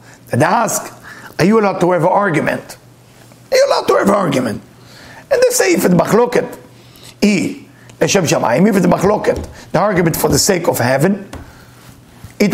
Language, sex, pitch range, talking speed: English, male, 175-220 Hz, 165 wpm